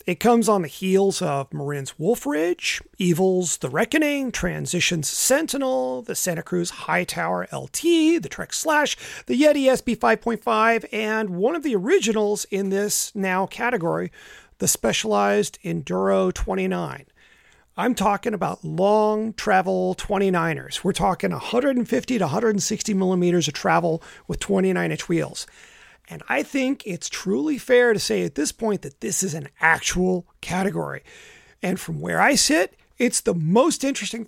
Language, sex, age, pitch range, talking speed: English, male, 30-49, 175-240 Hz, 140 wpm